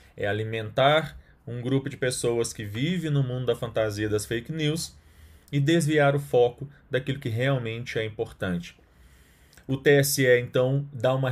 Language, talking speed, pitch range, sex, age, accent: Portuguese, 155 wpm, 105-130 Hz, male, 20-39, Brazilian